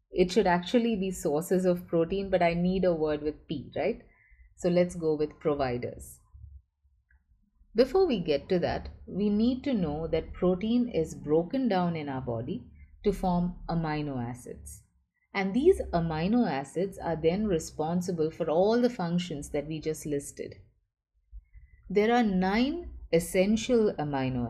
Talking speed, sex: 150 wpm, female